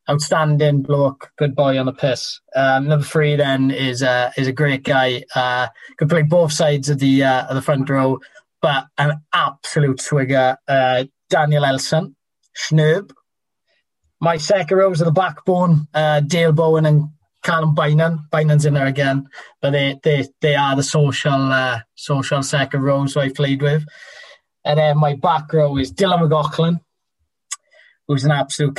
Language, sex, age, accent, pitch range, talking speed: English, male, 20-39, British, 135-155 Hz, 165 wpm